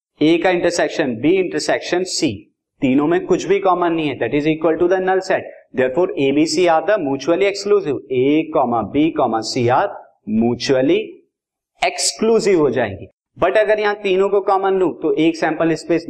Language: Hindi